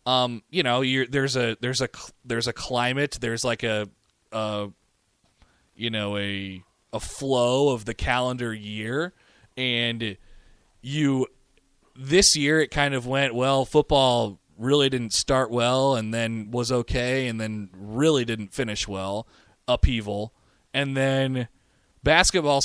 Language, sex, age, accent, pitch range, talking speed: English, male, 20-39, American, 115-150 Hz, 140 wpm